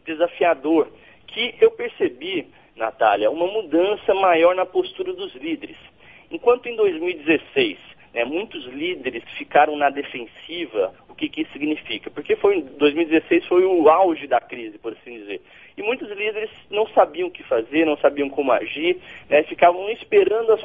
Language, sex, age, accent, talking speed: Portuguese, male, 40-59, Brazilian, 150 wpm